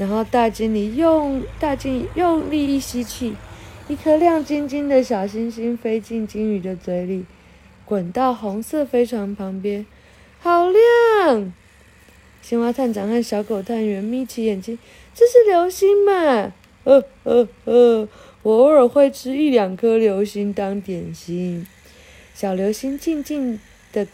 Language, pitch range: Chinese, 195-265 Hz